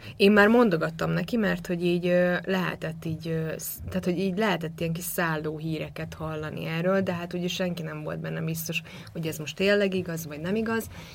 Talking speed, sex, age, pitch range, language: 190 wpm, female, 20-39, 155-180 Hz, Hungarian